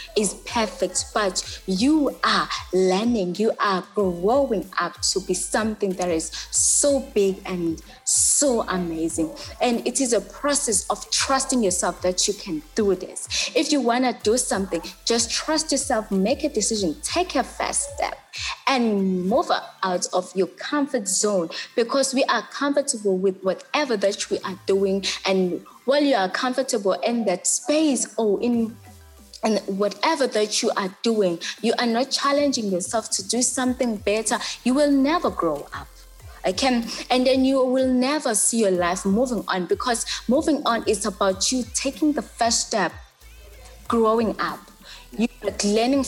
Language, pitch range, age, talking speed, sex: English, 190-250 Hz, 20-39, 160 wpm, female